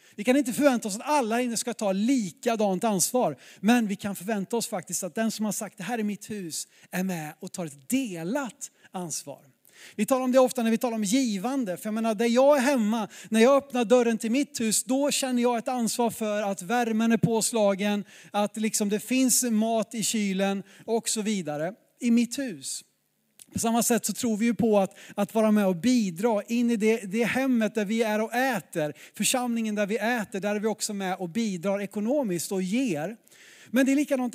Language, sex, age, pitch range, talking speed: Swedish, male, 30-49, 195-245 Hz, 215 wpm